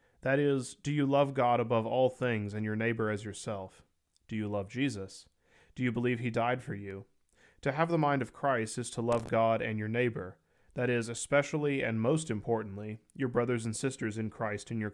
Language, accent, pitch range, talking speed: English, American, 105-130 Hz, 210 wpm